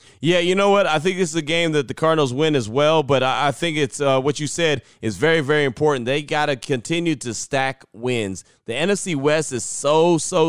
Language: English